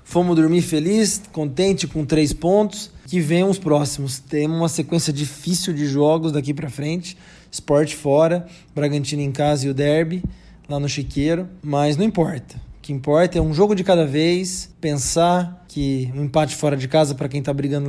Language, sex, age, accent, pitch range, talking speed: Portuguese, male, 20-39, Brazilian, 145-190 Hz, 180 wpm